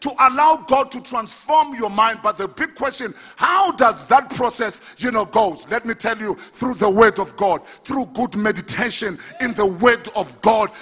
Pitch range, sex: 210-280 Hz, male